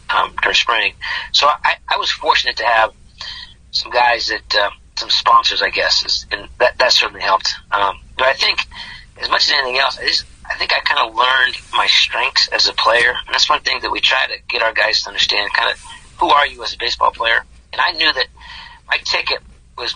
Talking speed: 225 wpm